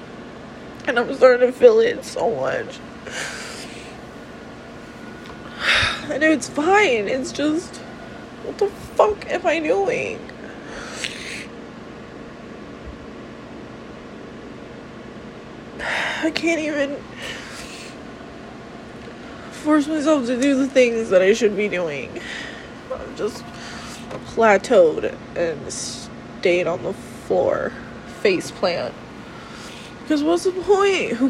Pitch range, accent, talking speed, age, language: 250-335 Hz, American, 95 wpm, 20-39, English